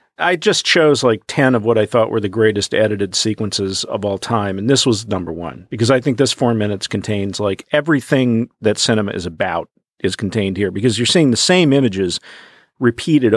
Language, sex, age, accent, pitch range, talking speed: English, male, 50-69, American, 100-130 Hz, 200 wpm